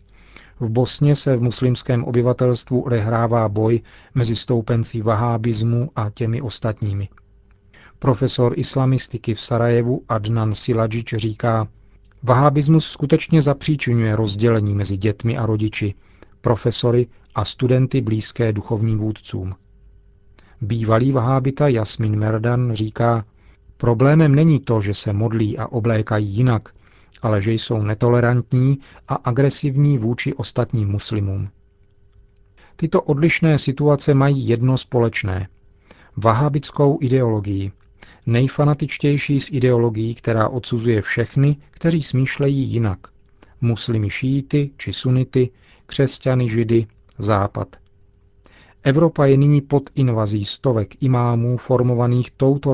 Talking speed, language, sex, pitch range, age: 105 wpm, Czech, male, 105-130 Hz, 40-59